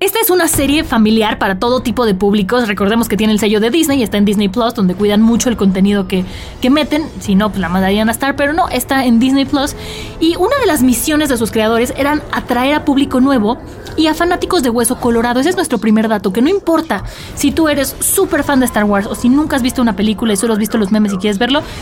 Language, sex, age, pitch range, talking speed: Spanish, female, 20-39, 225-295 Hz, 260 wpm